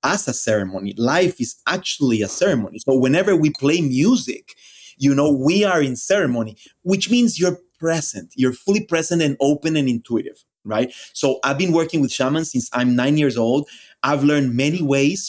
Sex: male